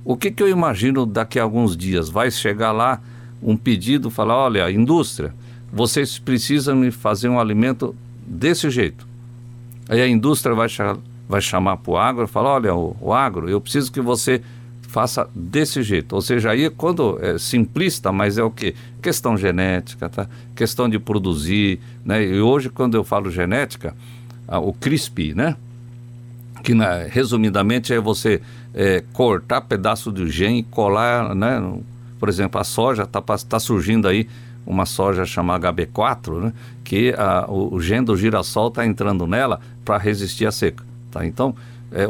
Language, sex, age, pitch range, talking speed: Portuguese, male, 50-69, 100-120 Hz, 165 wpm